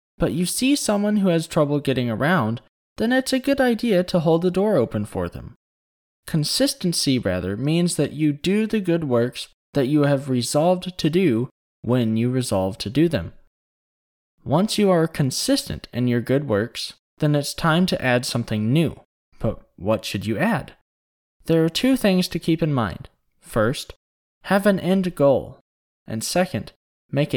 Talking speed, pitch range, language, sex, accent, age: 170 wpm, 110-175 Hz, English, male, American, 20-39